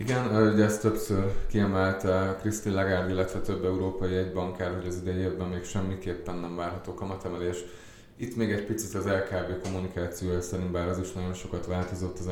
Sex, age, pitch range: male, 20-39, 90-100 Hz